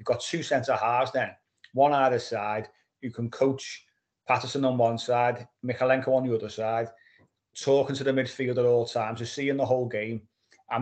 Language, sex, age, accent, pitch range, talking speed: English, male, 30-49, British, 115-130 Hz, 185 wpm